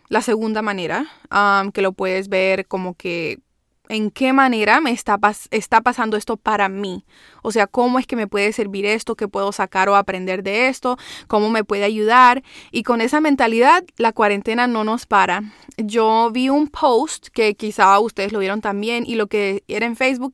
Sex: female